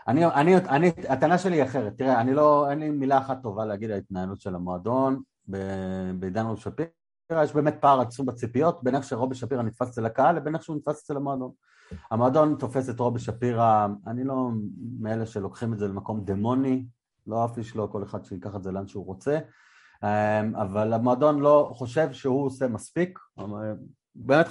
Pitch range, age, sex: 110-155 Hz, 30-49, male